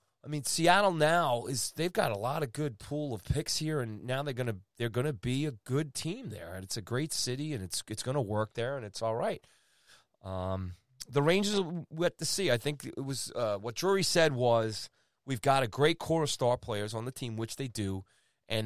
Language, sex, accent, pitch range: English, male, American, 110-145 Hz